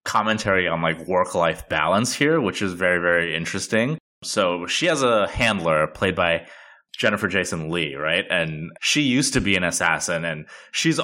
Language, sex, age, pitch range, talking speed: English, male, 20-39, 85-115 Hz, 170 wpm